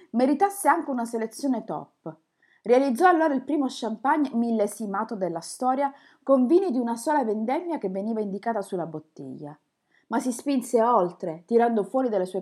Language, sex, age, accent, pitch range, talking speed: Italian, female, 30-49, native, 190-255 Hz, 155 wpm